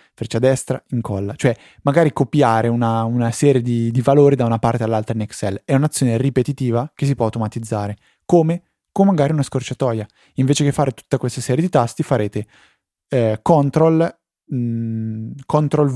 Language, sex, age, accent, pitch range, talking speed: Italian, male, 20-39, native, 115-145 Hz, 150 wpm